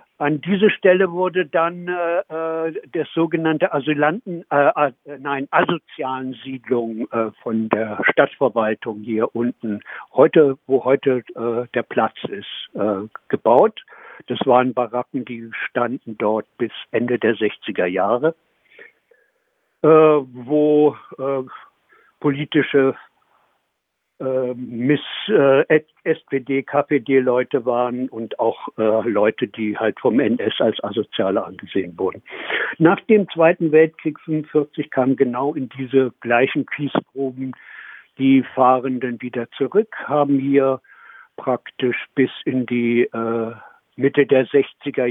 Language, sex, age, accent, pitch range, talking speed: German, male, 60-79, German, 120-155 Hz, 110 wpm